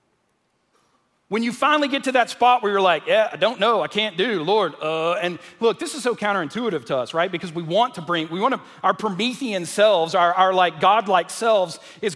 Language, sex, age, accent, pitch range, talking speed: English, male, 40-59, American, 190-255 Hz, 220 wpm